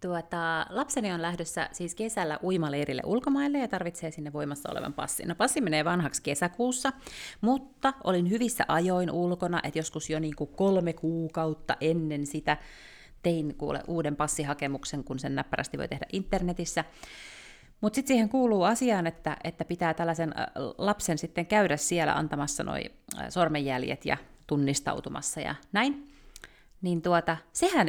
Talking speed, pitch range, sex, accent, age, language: 130 wpm, 150-195 Hz, female, native, 30-49, Finnish